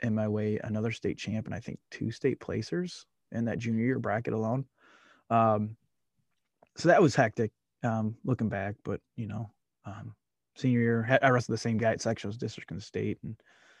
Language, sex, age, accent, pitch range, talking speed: English, male, 20-39, American, 110-120 Hz, 190 wpm